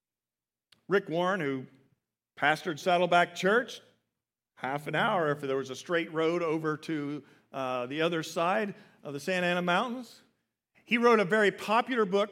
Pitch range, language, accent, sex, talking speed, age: 170-255 Hz, English, American, male, 155 wpm, 50-69